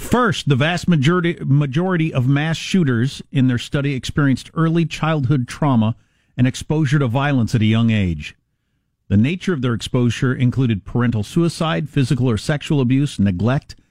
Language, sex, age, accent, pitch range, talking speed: English, male, 50-69, American, 105-140 Hz, 155 wpm